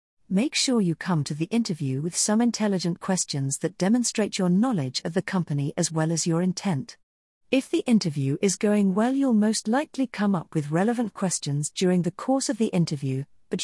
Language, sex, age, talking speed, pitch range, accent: English, female, 40-59, 195 wpm, 160-215 Hz, British